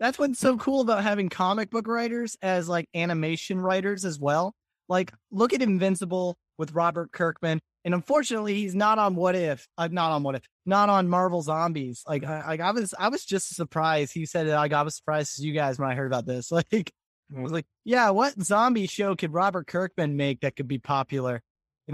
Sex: male